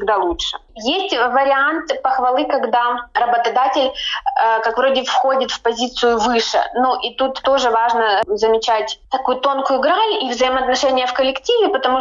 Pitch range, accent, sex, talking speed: 220-265 Hz, native, female, 140 wpm